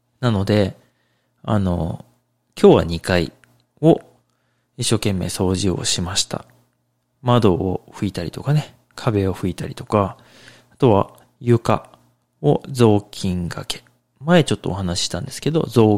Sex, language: male, Japanese